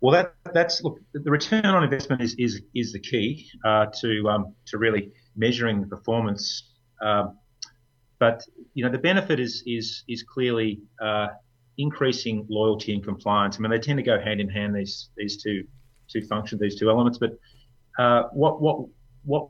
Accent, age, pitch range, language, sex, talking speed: Australian, 30-49, 105-125 Hz, English, male, 170 wpm